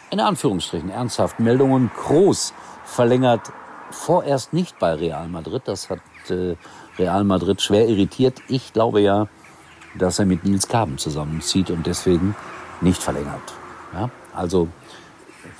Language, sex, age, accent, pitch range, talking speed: German, male, 50-69, German, 90-125 Hz, 130 wpm